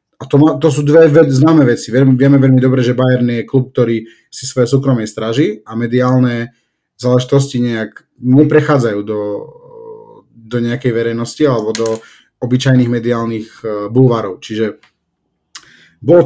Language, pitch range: Slovak, 115-140 Hz